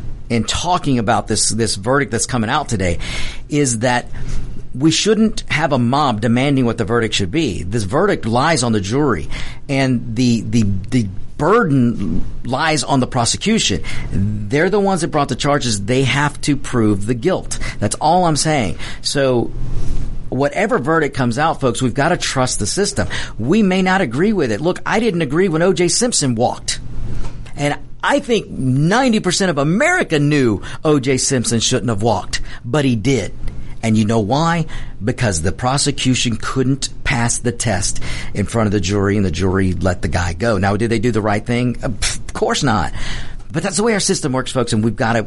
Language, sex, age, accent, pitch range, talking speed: English, male, 50-69, American, 115-150 Hz, 185 wpm